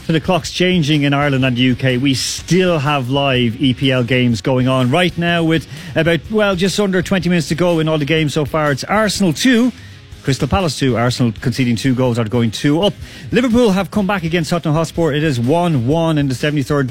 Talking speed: 215 wpm